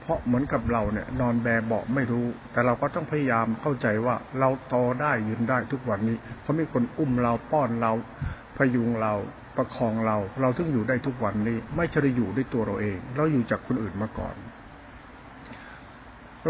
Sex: male